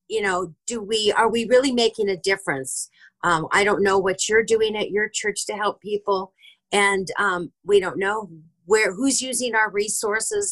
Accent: American